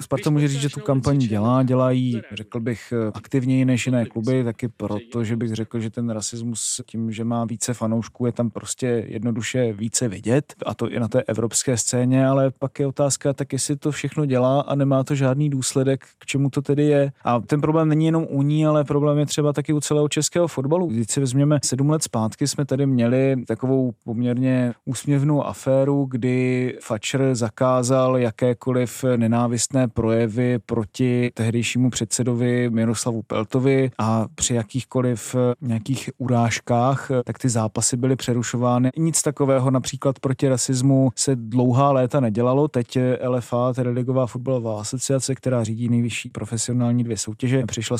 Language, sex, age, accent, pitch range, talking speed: Czech, male, 30-49, native, 115-135 Hz, 165 wpm